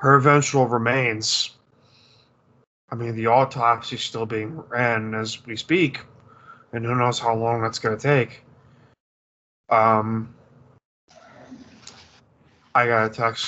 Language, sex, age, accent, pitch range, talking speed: English, male, 20-39, American, 110-125 Hz, 120 wpm